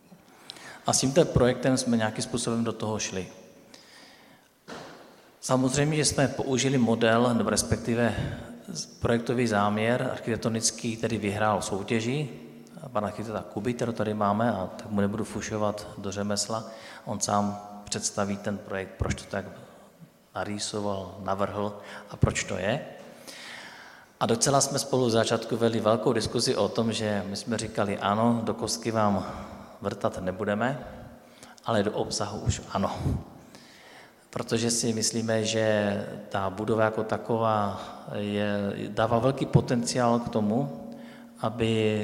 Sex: male